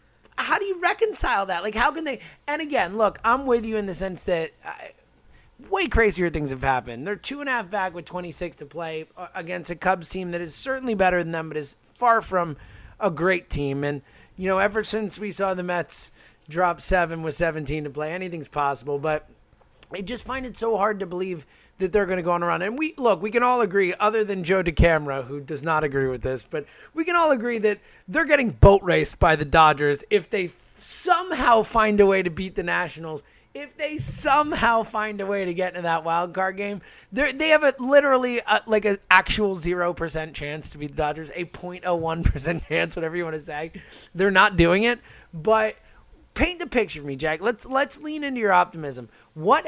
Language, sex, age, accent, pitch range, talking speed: English, male, 30-49, American, 160-225 Hz, 215 wpm